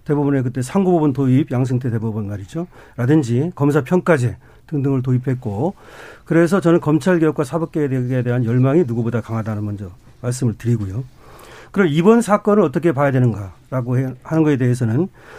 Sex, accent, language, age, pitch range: male, native, Korean, 40-59, 130-205 Hz